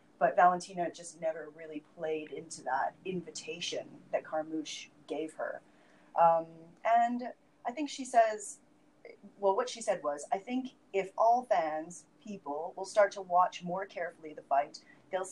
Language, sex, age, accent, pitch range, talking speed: English, female, 30-49, American, 165-265 Hz, 155 wpm